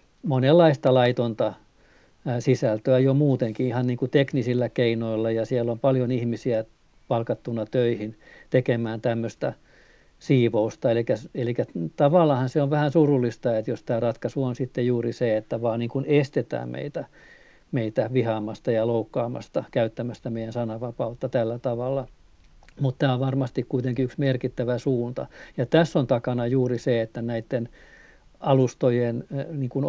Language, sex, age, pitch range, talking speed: Finnish, male, 50-69, 120-135 Hz, 135 wpm